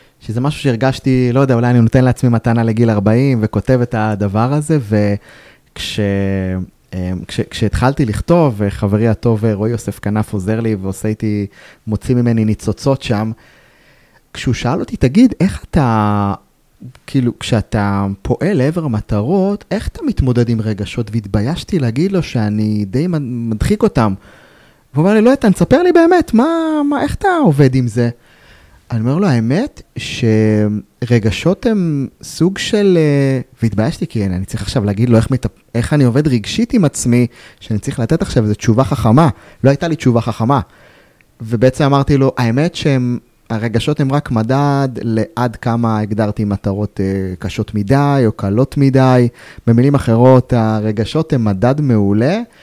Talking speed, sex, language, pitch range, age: 150 wpm, male, Hebrew, 110-140 Hz, 30-49